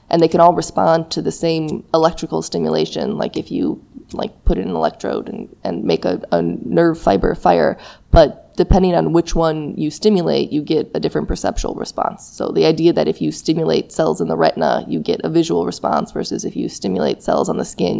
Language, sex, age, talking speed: English, female, 20-39, 210 wpm